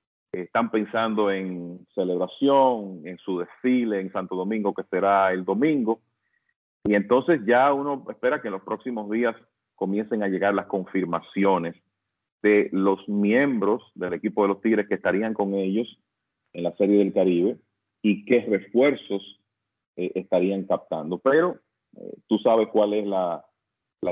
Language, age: English, 40-59